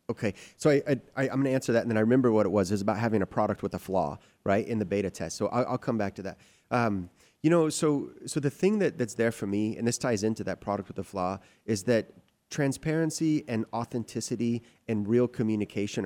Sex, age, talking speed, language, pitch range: male, 30-49, 245 wpm, English, 105-130 Hz